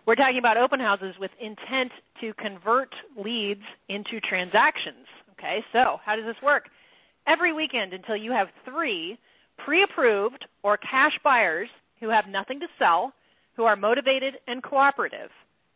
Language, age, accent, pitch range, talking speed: English, 30-49, American, 205-265 Hz, 145 wpm